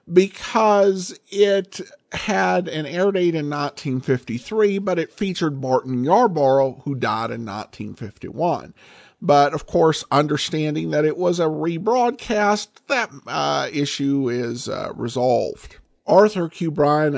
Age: 50-69